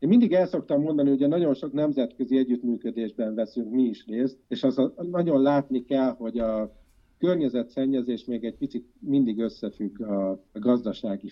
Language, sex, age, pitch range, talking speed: Hungarian, male, 50-69, 100-125 Hz, 160 wpm